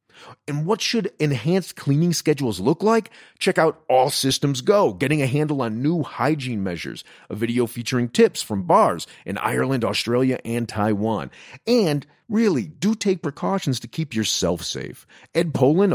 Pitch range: 115-155 Hz